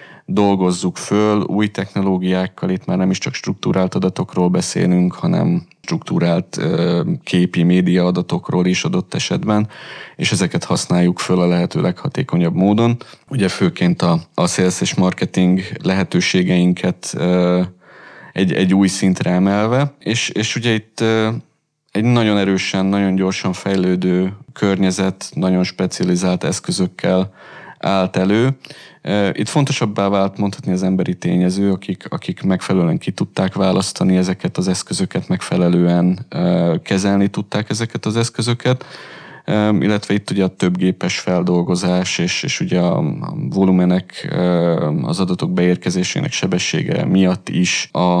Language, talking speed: Hungarian, 120 wpm